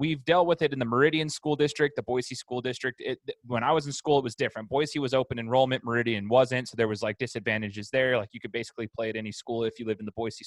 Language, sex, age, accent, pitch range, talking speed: English, male, 20-39, American, 115-145 Hz, 275 wpm